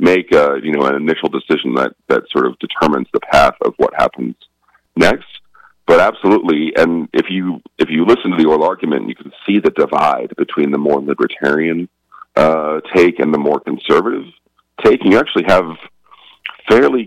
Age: 40-59